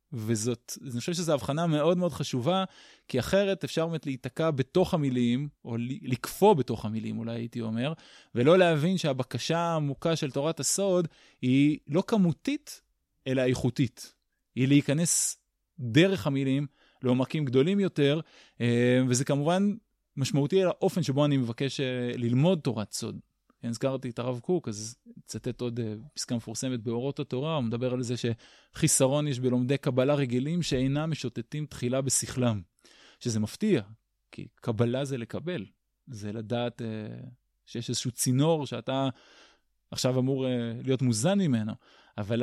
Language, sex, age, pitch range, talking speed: Hebrew, male, 20-39, 120-150 Hz, 135 wpm